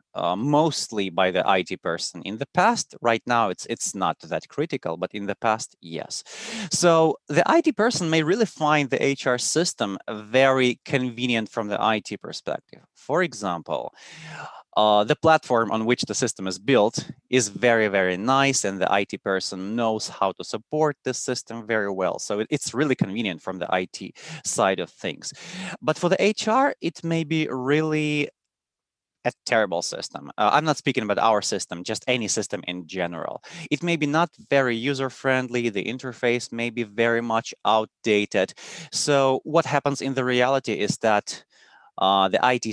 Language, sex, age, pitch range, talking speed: English, male, 30-49, 110-155 Hz, 170 wpm